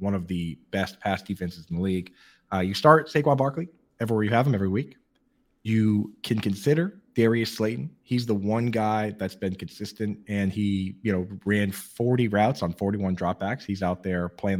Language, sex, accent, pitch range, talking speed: English, male, American, 95-125 Hz, 190 wpm